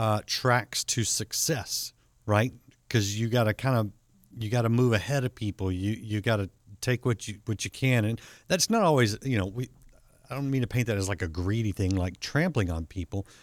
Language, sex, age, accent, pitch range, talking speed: English, male, 50-69, American, 100-125 Hz, 215 wpm